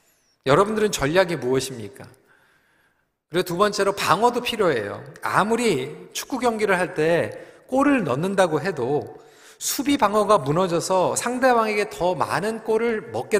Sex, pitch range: male, 140-230 Hz